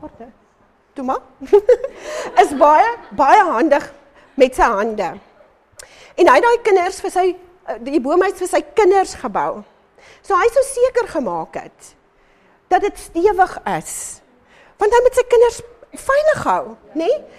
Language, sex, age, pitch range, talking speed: English, female, 40-59, 240-385 Hz, 125 wpm